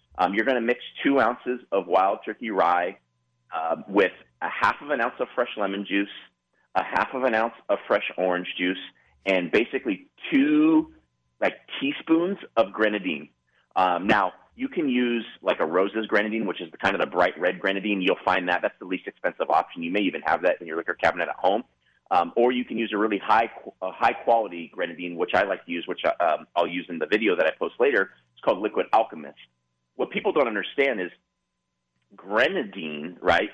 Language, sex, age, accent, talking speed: English, male, 30-49, American, 200 wpm